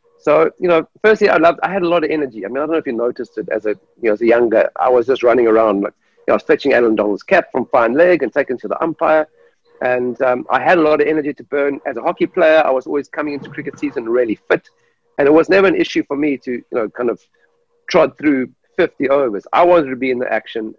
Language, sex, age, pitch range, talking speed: English, male, 50-69, 135-200 Hz, 275 wpm